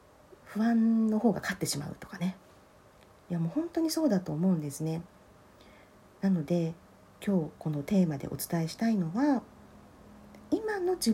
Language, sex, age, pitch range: Japanese, female, 40-59, 145-225 Hz